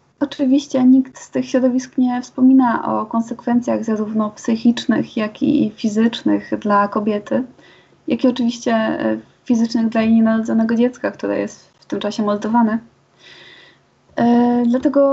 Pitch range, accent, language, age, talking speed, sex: 215-255 Hz, native, Polish, 20-39, 125 wpm, female